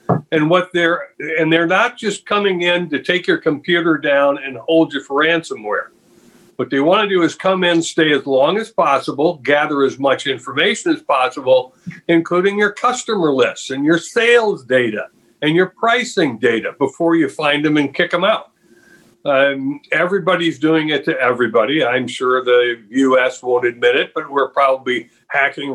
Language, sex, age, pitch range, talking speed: English, male, 60-79, 140-180 Hz, 175 wpm